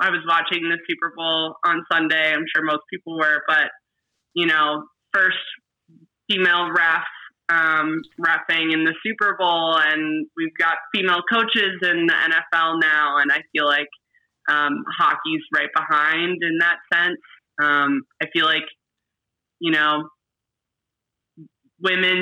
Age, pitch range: 20-39, 155-185 Hz